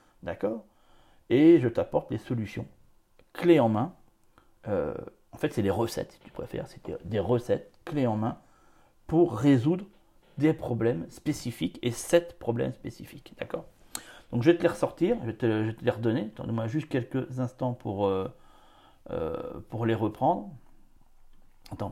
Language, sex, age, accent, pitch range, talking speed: French, male, 40-59, French, 105-135 Hz, 160 wpm